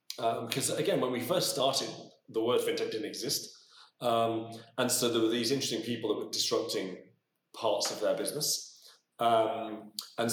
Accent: British